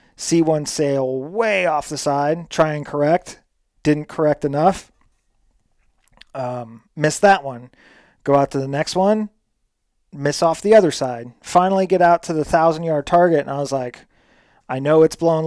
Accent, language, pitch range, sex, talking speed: American, English, 140-175 Hz, male, 165 wpm